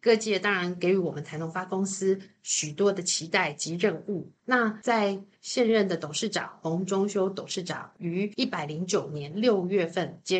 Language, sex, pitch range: Chinese, female, 175-225 Hz